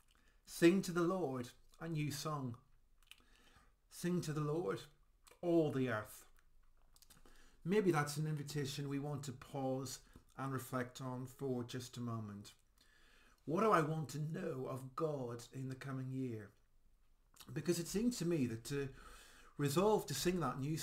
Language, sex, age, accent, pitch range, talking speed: English, male, 50-69, British, 120-150 Hz, 155 wpm